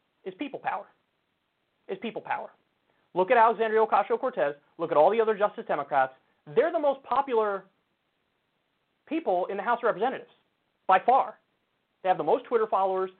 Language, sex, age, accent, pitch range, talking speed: English, male, 30-49, American, 175-225 Hz, 160 wpm